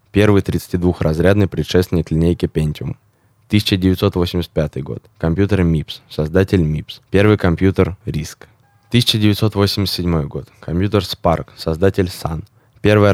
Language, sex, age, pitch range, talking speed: Russian, male, 20-39, 85-105 Hz, 95 wpm